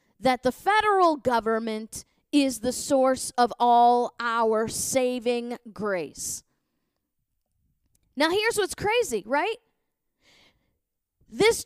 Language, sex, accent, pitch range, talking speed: English, female, American, 235-310 Hz, 95 wpm